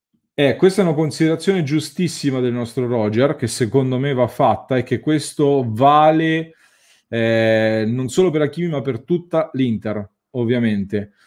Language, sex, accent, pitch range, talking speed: English, male, Italian, 115-150 Hz, 150 wpm